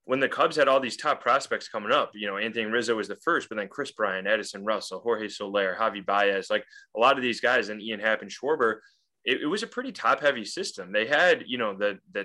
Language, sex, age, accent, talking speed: English, male, 20-39, American, 255 wpm